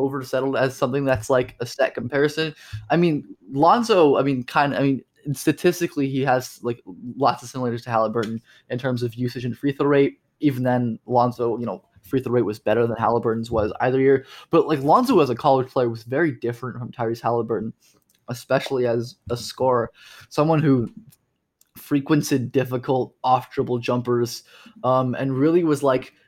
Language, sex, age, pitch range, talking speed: English, male, 20-39, 120-140 Hz, 180 wpm